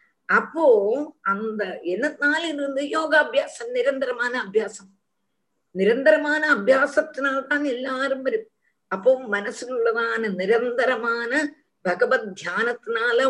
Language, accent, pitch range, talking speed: Tamil, native, 205-305 Hz, 65 wpm